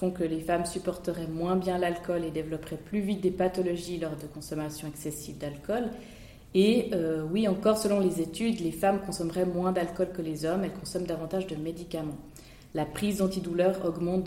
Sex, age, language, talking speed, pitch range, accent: female, 20-39, French, 175 wpm, 165-195 Hz, French